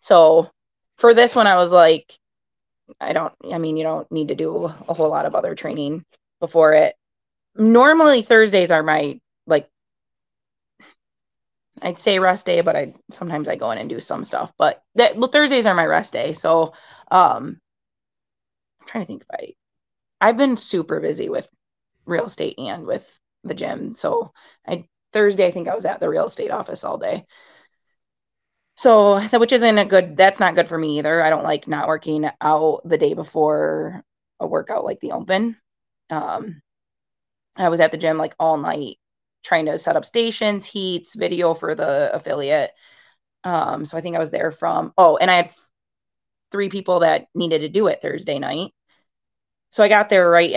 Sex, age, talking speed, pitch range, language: female, 20-39, 185 wpm, 160-210 Hz, English